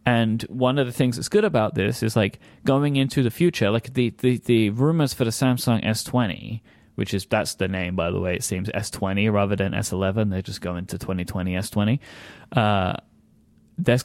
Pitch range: 105-130 Hz